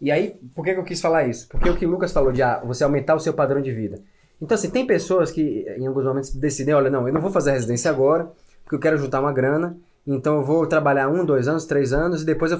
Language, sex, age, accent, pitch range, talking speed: Portuguese, male, 20-39, Brazilian, 140-175 Hz, 280 wpm